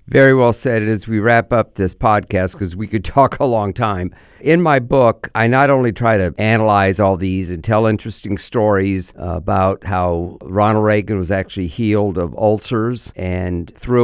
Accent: American